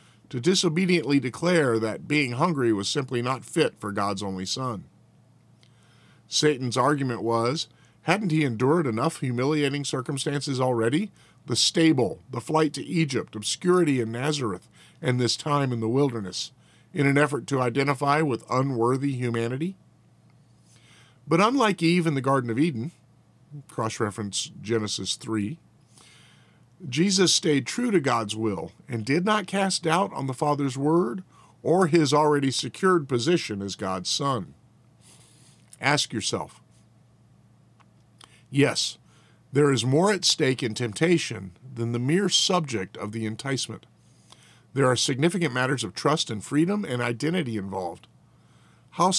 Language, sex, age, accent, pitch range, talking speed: English, male, 50-69, American, 115-160 Hz, 135 wpm